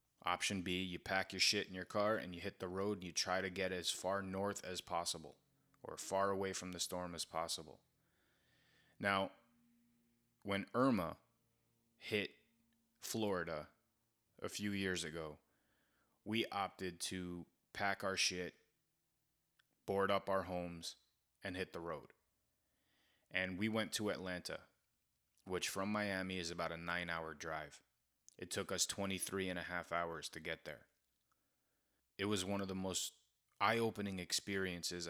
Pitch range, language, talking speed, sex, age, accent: 90-105 Hz, English, 150 wpm, male, 20-39, American